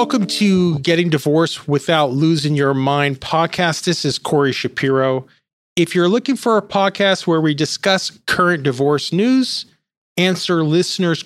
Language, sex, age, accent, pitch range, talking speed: English, male, 40-59, American, 160-200 Hz, 145 wpm